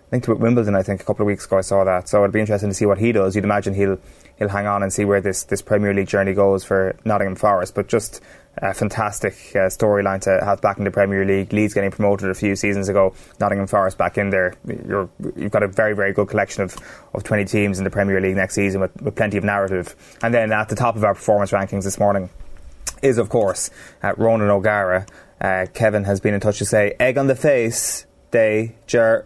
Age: 20-39